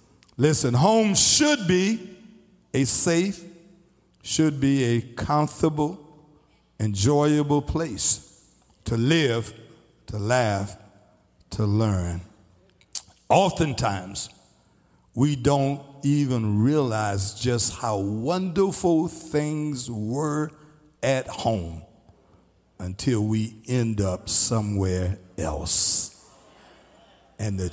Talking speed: 80 wpm